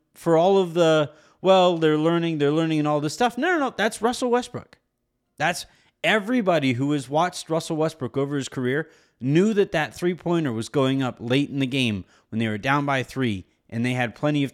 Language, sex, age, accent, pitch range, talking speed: English, male, 30-49, American, 125-165 Hz, 210 wpm